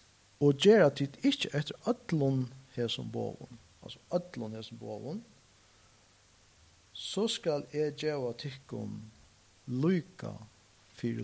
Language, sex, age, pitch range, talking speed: English, male, 50-69, 100-135 Hz, 90 wpm